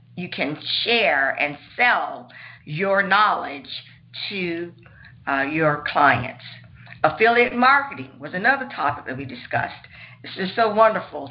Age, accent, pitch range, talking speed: 50-69, American, 140-195 Hz, 120 wpm